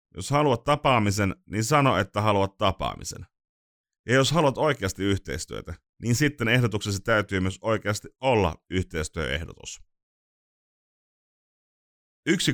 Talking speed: 105 wpm